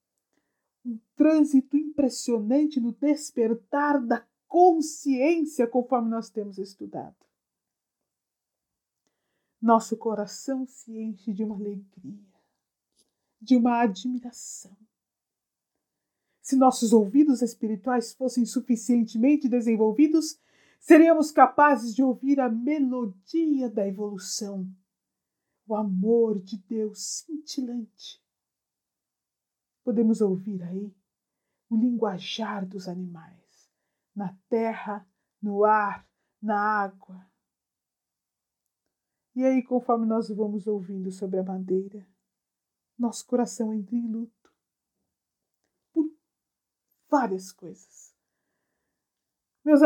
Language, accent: Portuguese, Brazilian